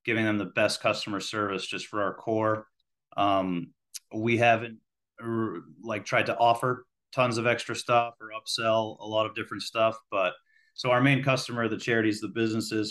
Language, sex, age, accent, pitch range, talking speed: English, male, 30-49, American, 100-120 Hz, 170 wpm